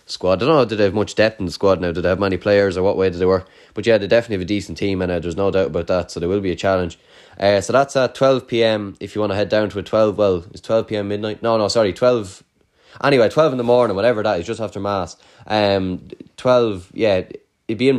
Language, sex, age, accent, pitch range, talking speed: English, male, 20-39, Irish, 90-110 Hz, 290 wpm